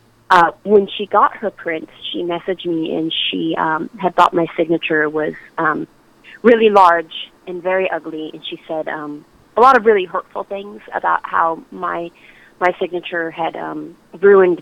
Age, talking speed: 30-49, 170 wpm